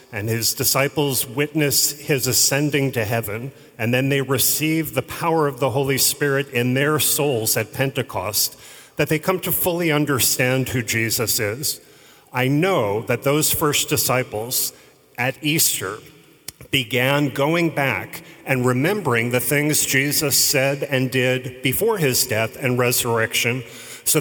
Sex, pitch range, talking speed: male, 125-150 Hz, 140 wpm